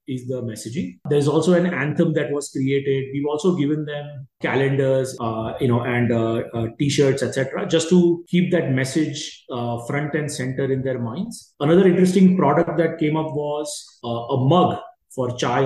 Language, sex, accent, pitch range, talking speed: English, male, Indian, 130-170 Hz, 180 wpm